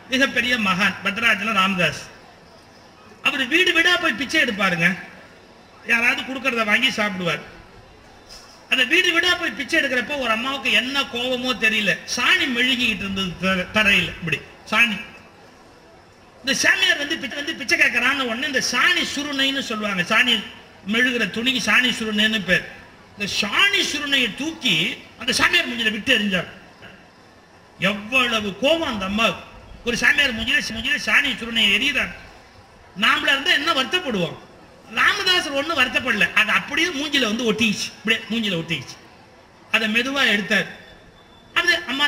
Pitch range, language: 215-280 Hz, Tamil